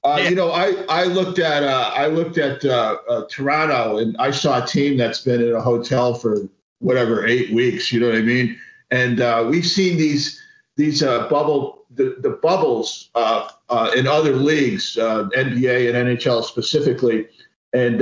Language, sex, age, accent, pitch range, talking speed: English, male, 50-69, American, 125-155 Hz, 190 wpm